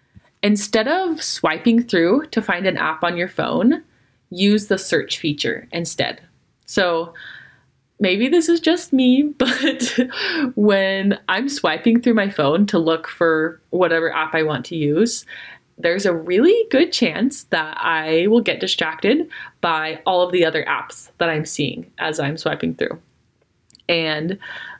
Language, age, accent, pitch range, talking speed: English, 20-39, American, 165-235 Hz, 150 wpm